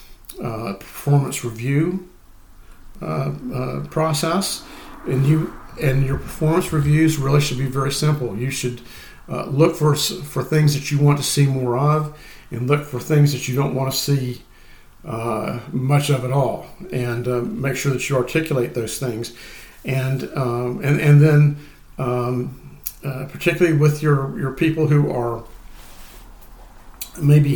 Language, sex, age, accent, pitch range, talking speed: English, male, 50-69, American, 125-150 Hz, 150 wpm